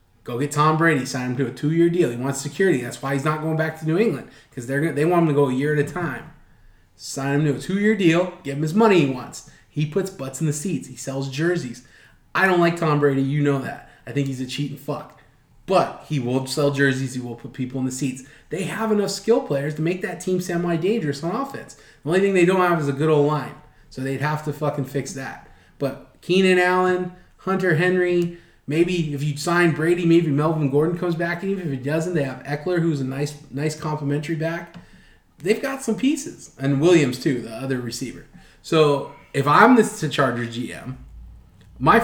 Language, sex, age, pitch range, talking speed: English, male, 20-39, 135-175 Hz, 225 wpm